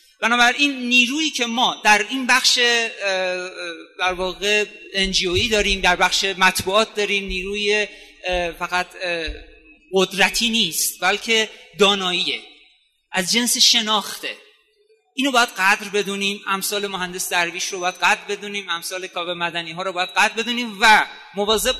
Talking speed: 120 wpm